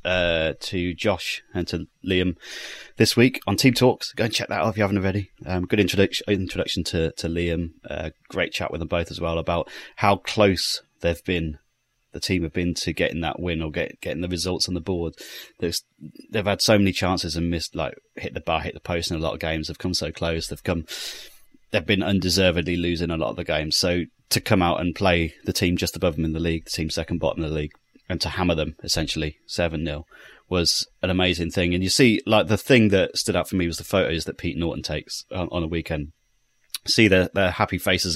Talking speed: 235 wpm